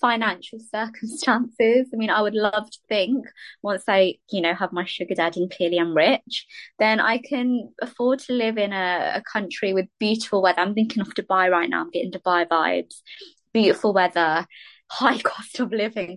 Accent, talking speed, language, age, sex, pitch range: British, 185 wpm, English, 20-39, female, 175-215 Hz